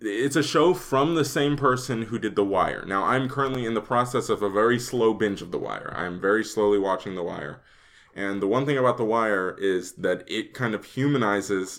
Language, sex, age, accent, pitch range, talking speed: English, male, 20-39, American, 100-130 Hz, 225 wpm